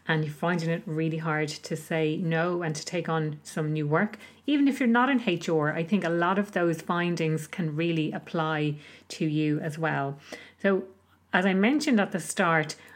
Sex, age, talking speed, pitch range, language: female, 30-49, 200 wpm, 165-210 Hz, English